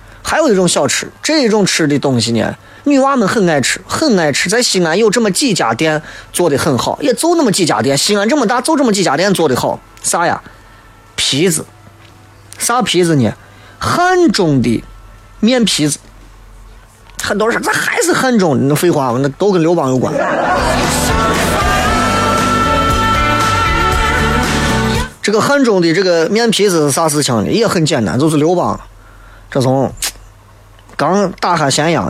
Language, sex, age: Chinese, male, 30-49